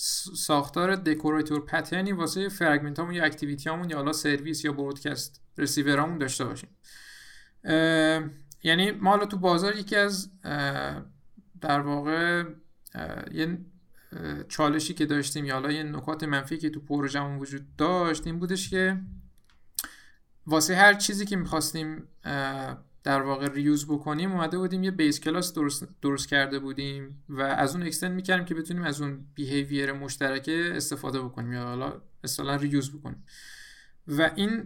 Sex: male